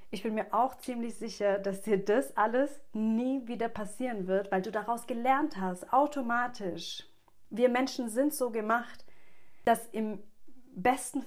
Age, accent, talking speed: 40-59, German, 150 wpm